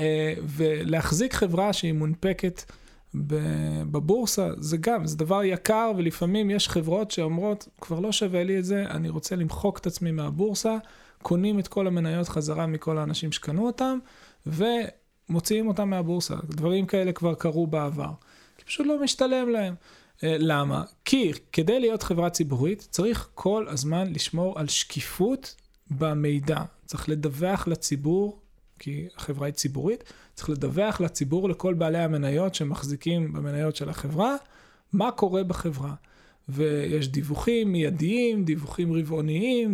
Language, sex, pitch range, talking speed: Hebrew, male, 155-200 Hz, 130 wpm